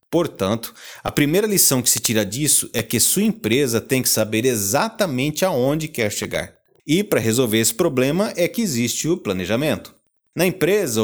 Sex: male